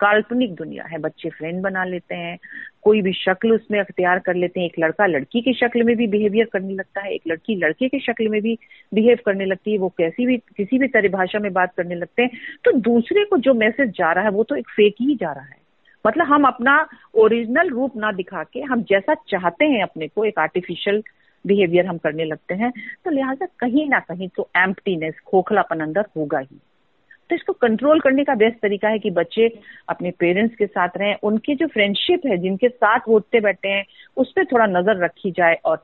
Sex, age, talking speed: female, 40-59, 215 wpm